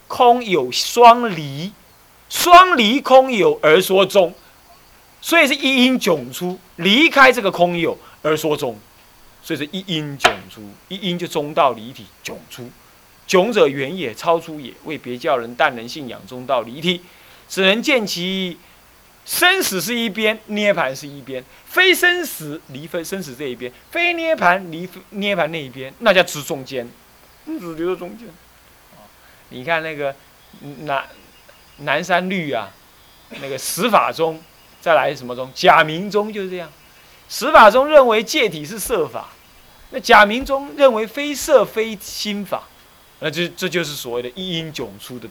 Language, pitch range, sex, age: Chinese, 135-230 Hz, male, 20-39